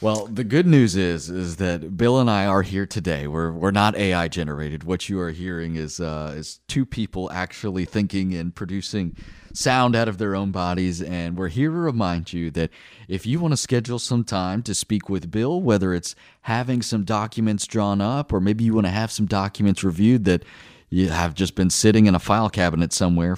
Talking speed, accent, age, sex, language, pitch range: 210 wpm, American, 30-49, male, English, 90-115 Hz